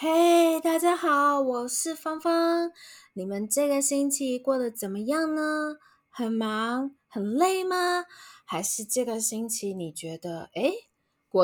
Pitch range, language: 185-295 Hz, Chinese